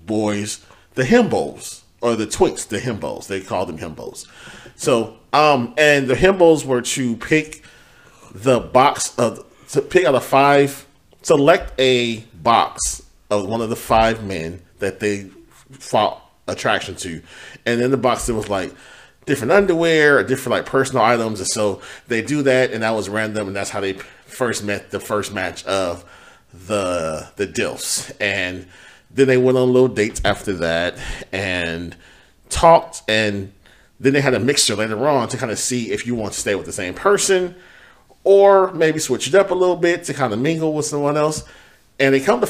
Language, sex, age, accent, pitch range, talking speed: English, male, 40-59, American, 100-150 Hz, 180 wpm